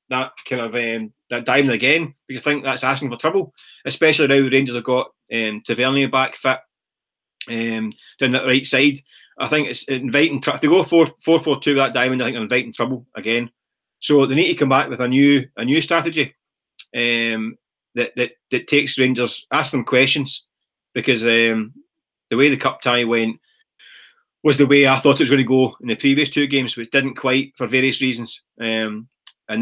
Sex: male